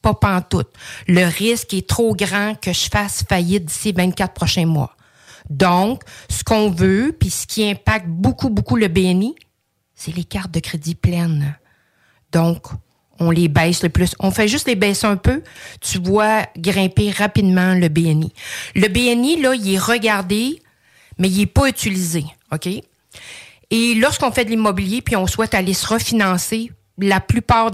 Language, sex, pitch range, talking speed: French, female, 165-210 Hz, 170 wpm